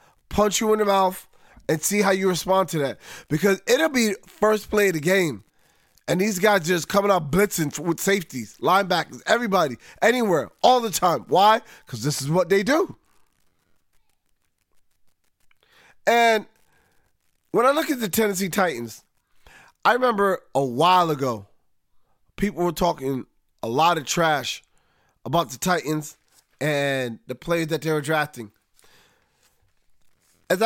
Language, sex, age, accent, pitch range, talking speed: English, male, 30-49, American, 150-200 Hz, 145 wpm